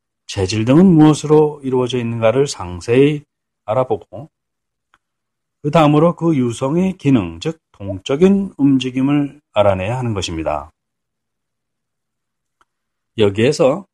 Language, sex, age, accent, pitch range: Korean, male, 40-59, native, 115-160 Hz